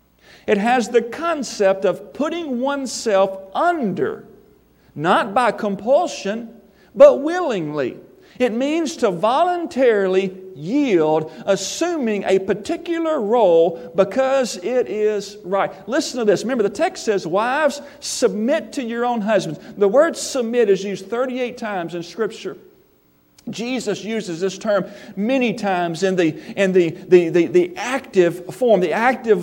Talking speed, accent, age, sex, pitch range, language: 135 wpm, American, 50-69, male, 195-250 Hz, English